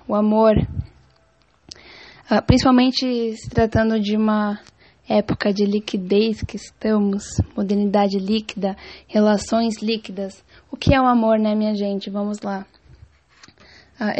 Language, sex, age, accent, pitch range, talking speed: English, female, 10-29, Brazilian, 215-240 Hz, 120 wpm